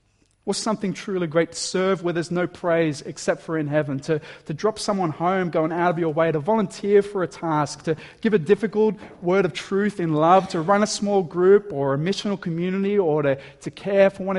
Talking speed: 220 wpm